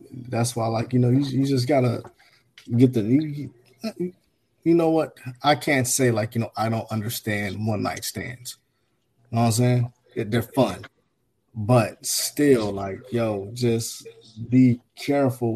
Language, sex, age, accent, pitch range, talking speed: English, male, 20-39, American, 115-135 Hz, 160 wpm